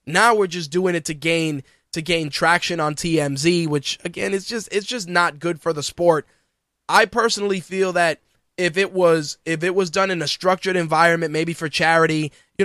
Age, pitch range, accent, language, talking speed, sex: 20-39, 155-185 Hz, American, English, 200 wpm, male